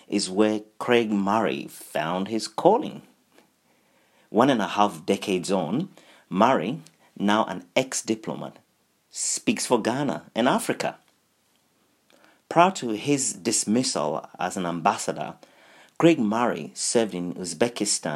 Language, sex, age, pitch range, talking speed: English, male, 40-59, 90-125 Hz, 110 wpm